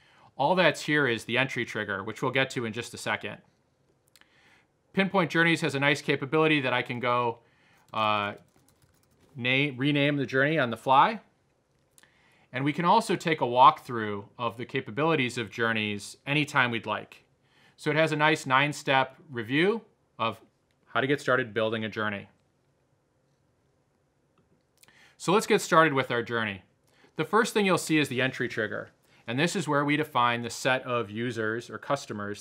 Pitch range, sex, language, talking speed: 120-150 Hz, male, English, 165 wpm